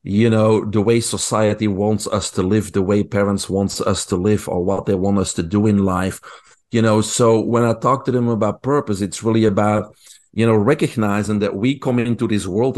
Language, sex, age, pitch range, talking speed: English, male, 40-59, 105-120 Hz, 220 wpm